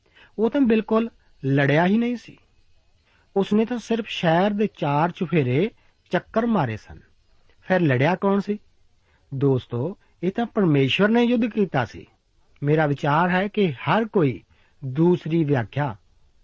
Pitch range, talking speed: 130-185 Hz, 130 wpm